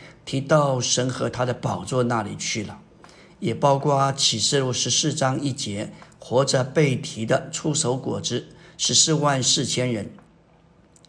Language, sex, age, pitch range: Chinese, male, 50-69, 120-145 Hz